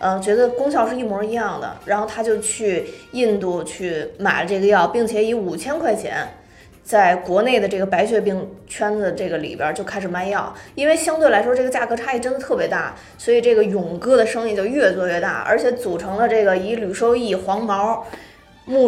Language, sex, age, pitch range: Chinese, female, 20-39, 195-255 Hz